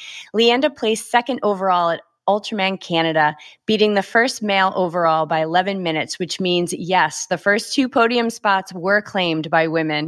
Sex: female